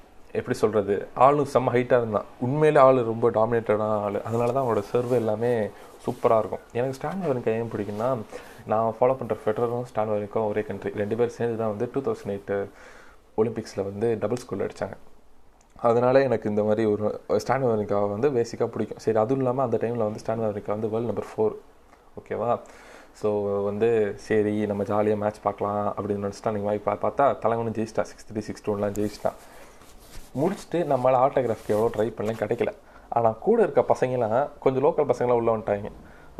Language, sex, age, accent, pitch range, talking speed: Tamil, male, 20-39, native, 105-120 Hz, 165 wpm